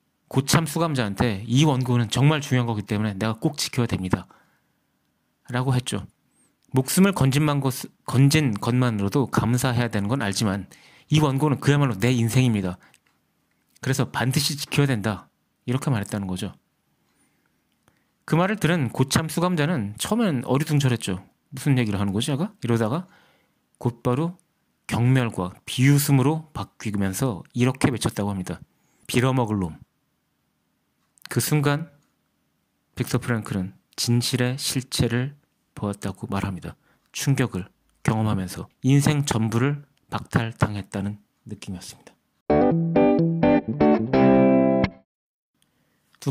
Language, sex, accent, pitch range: Korean, male, native, 105-145 Hz